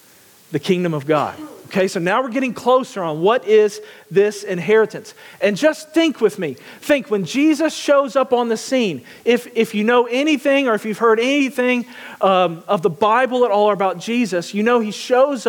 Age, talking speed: 40-59, 200 wpm